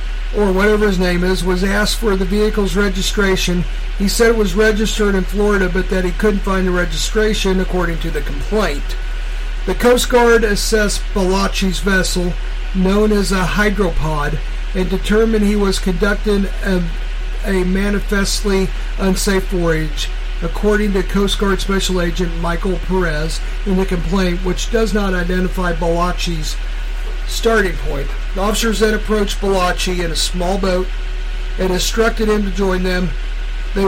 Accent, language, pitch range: American, English, 185-205 Hz